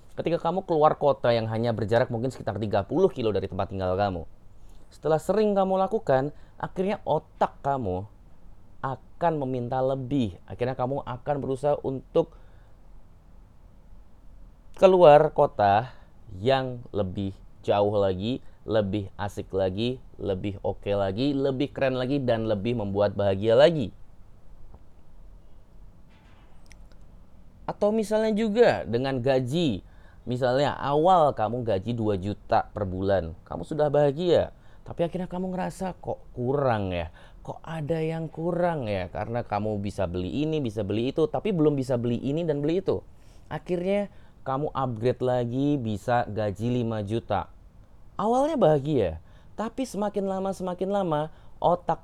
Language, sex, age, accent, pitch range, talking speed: Indonesian, male, 30-49, native, 100-150 Hz, 130 wpm